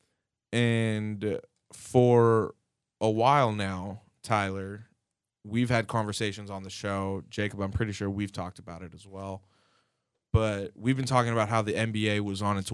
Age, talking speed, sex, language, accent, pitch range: 20-39, 155 wpm, male, English, American, 95-110 Hz